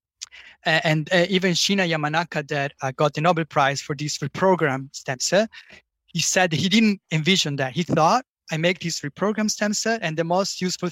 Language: English